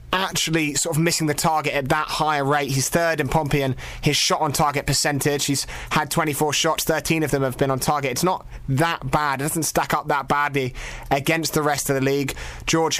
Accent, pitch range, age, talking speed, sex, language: British, 135-155 Hz, 20-39, 220 wpm, male, English